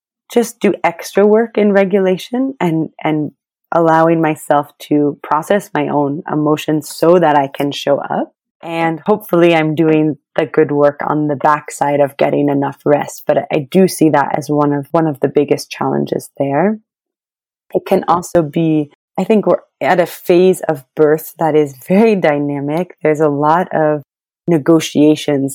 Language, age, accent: English, 30-49, American